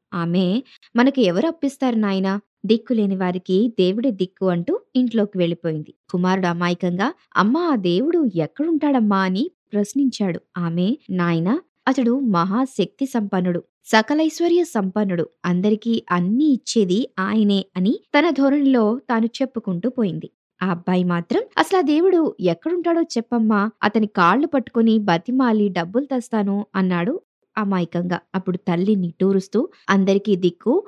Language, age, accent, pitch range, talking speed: Telugu, 20-39, native, 185-260 Hz, 110 wpm